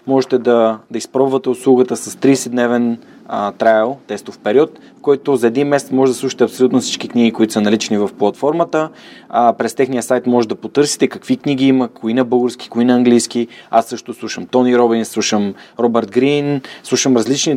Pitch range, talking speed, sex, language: 115-135 Hz, 180 wpm, male, Bulgarian